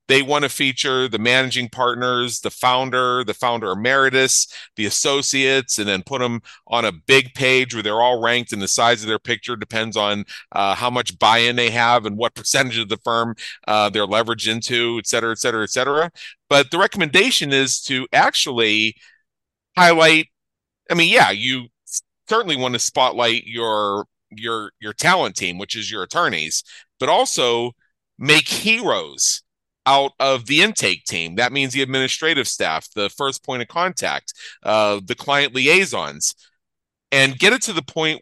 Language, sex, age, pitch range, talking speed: English, male, 40-59, 110-135 Hz, 175 wpm